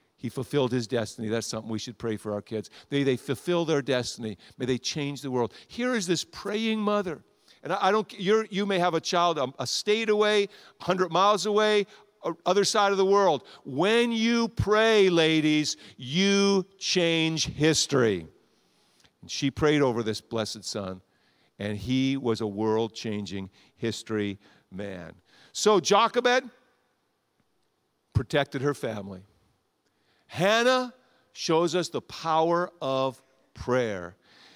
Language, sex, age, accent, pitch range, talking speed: English, male, 50-69, American, 115-185 Hz, 140 wpm